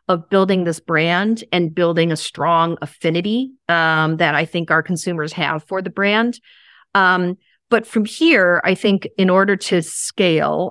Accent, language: American, English